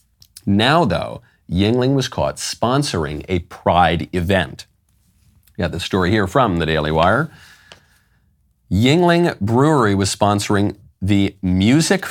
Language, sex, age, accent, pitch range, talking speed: English, male, 40-59, American, 90-120 Hz, 120 wpm